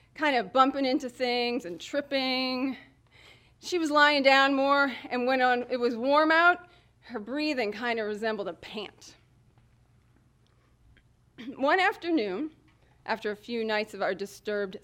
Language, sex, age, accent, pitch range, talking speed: English, female, 30-49, American, 200-275 Hz, 140 wpm